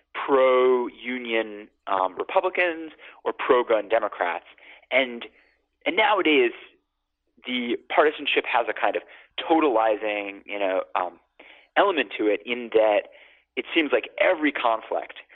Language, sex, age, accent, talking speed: English, male, 30-49, American, 115 wpm